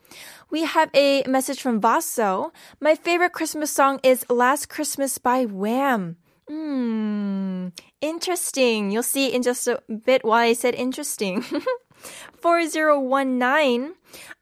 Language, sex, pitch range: Korean, female, 240-300 Hz